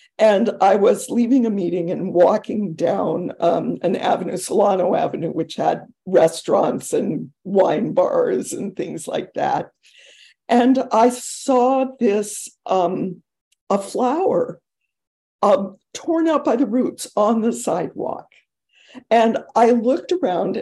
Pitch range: 200-270 Hz